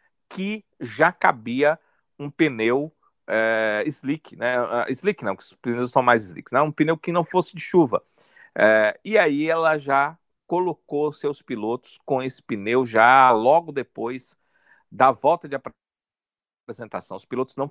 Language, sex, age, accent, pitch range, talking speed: Portuguese, male, 50-69, Brazilian, 120-160 Hz, 145 wpm